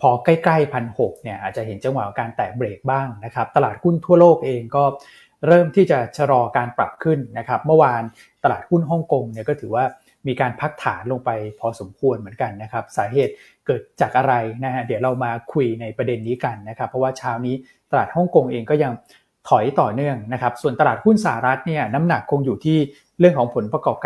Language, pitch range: Thai, 120-150 Hz